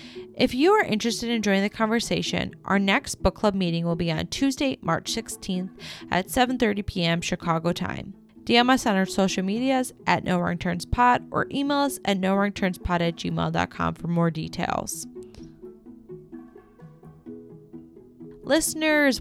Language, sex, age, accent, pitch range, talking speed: English, female, 20-39, American, 170-230 Hz, 155 wpm